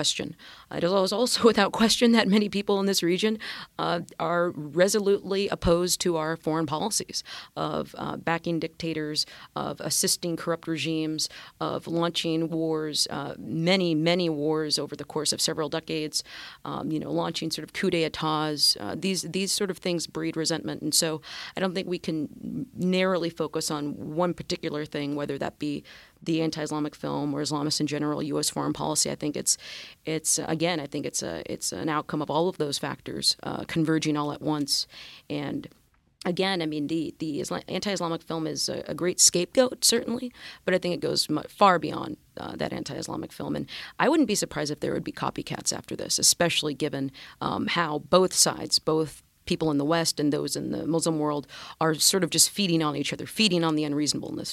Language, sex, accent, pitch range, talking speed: English, female, American, 150-180 Hz, 190 wpm